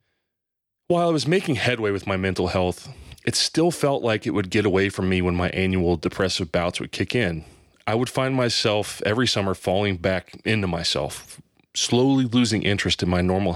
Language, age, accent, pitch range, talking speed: English, 30-49, American, 90-120 Hz, 190 wpm